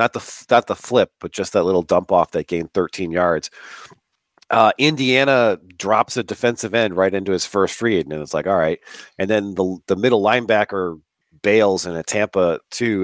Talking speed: 190 wpm